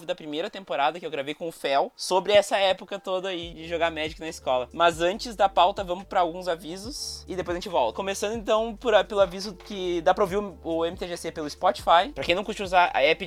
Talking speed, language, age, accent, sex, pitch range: 245 wpm, Portuguese, 20-39, Brazilian, male, 150-190 Hz